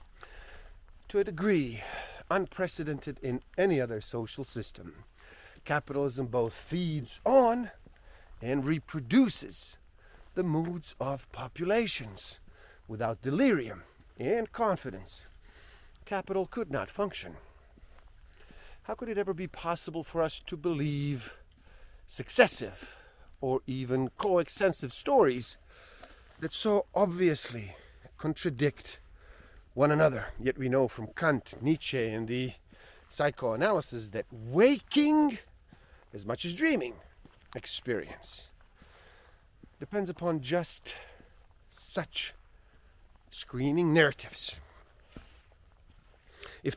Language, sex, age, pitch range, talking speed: English, male, 50-69, 110-170 Hz, 90 wpm